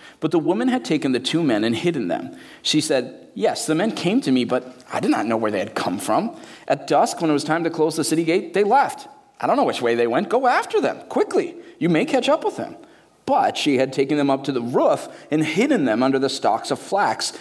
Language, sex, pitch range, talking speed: English, male, 130-185 Hz, 260 wpm